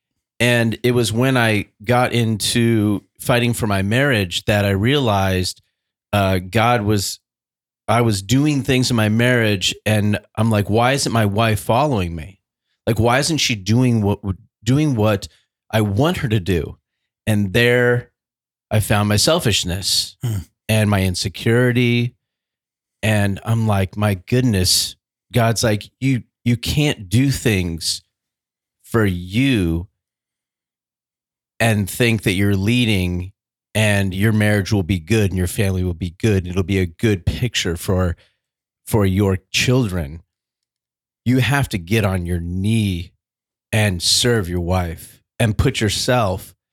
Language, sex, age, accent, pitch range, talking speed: English, male, 40-59, American, 95-120 Hz, 140 wpm